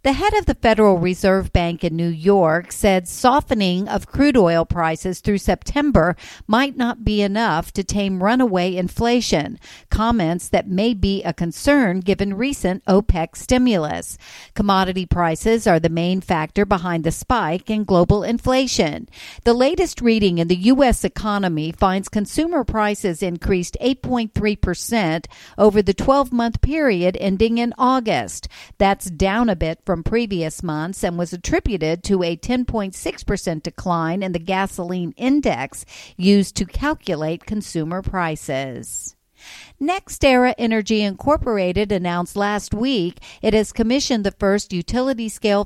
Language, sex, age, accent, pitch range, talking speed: English, female, 50-69, American, 180-235 Hz, 140 wpm